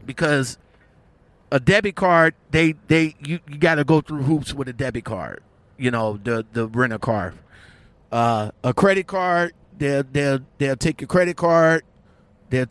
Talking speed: 165 wpm